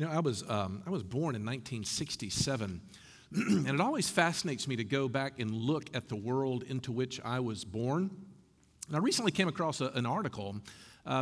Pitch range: 125-180 Hz